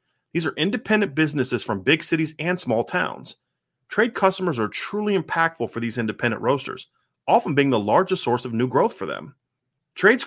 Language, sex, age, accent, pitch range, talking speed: English, male, 30-49, American, 125-190 Hz, 175 wpm